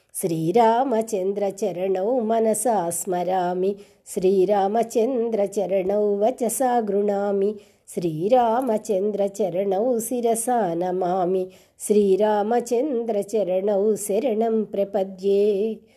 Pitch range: 195-230 Hz